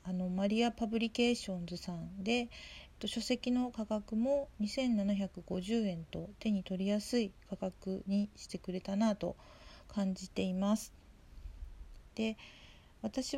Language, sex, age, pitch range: Japanese, female, 40-59, 185-230 Hz